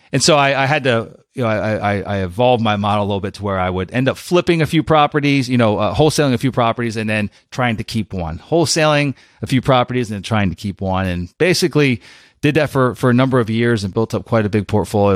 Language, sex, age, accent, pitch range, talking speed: English, male, 30-49, American, 100-125 Hz, 265 wpm